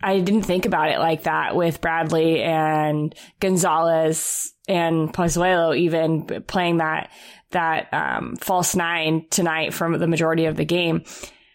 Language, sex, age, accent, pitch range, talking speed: English, female, 20-39, American, 170-210 Hz, 140 wpm